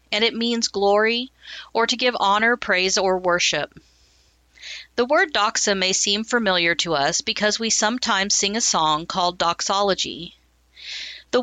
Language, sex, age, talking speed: English, female, 50-69, 145 wpm